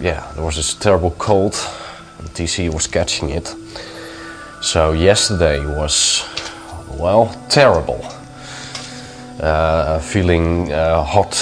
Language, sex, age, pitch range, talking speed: English, male, 30-49, 85-110 Hz, 105 wpm